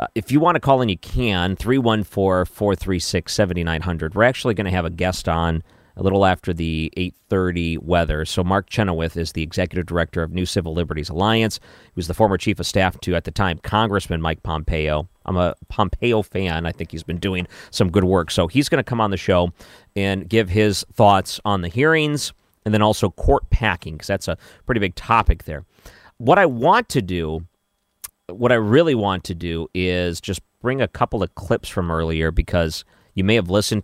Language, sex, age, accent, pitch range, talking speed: English, male, 40-59, American, 85-110 Hz, 200 wpm